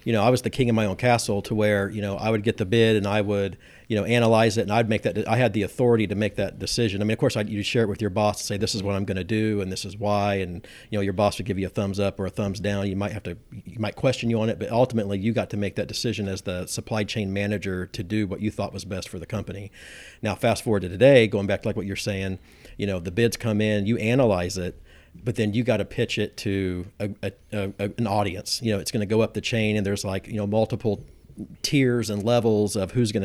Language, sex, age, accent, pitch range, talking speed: English, male, 50-69, American, 100-115 Hz, 300 wpm